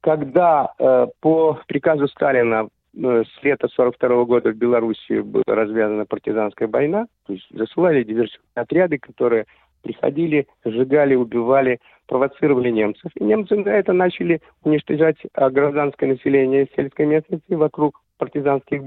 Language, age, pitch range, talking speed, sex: English, 50-69, 120-165 Hz, 125 wpm, male